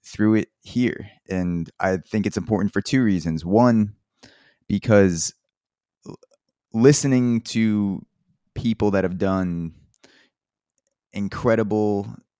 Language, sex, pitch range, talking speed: English, male, 85-105 Hz, 95 wpm